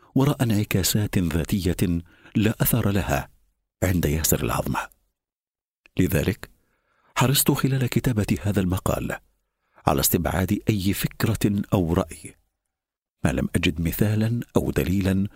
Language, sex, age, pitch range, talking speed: Arabic, male, 50-69, 80-110 Hz, 105 wpm